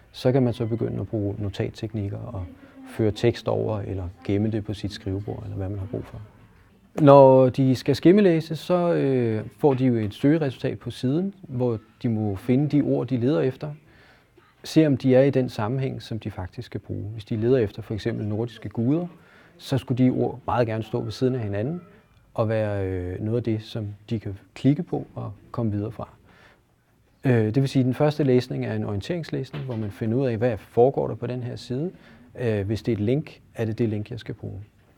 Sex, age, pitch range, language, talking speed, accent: male, 30-49, 110-130 Hz, Danish, 215 wpm, native